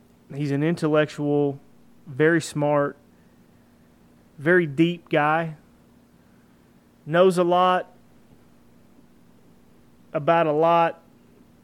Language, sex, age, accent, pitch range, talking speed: English, male, 30-49, American, 140-175 Hz, 70 wpm